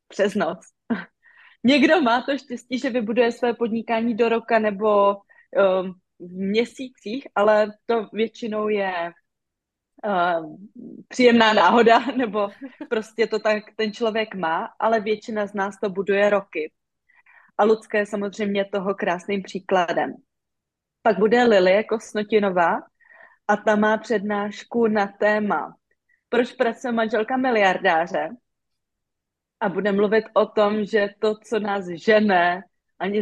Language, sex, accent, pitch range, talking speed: Czech, female, native, 205-240 Hz, 125 wpm